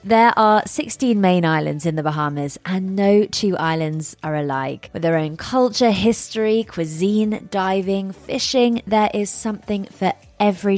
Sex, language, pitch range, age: female, English, 155-200 Hz, 20-39